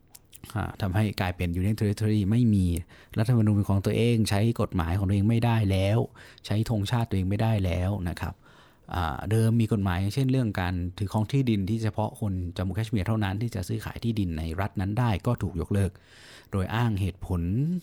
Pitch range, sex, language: 90-115 Hz, male, Thai